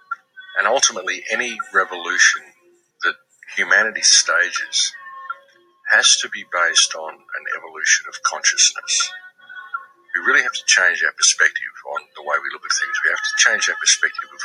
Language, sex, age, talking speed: English, male, 50-69, 155 wpm